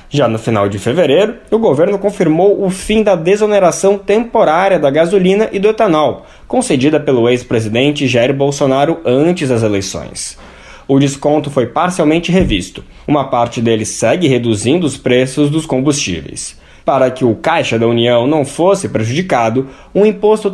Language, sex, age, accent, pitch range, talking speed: Portuguese, male, 20-39, Brazilian, 130-195 Hz, 150 wpm